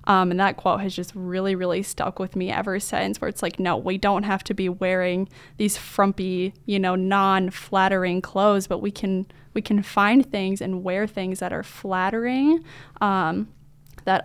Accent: American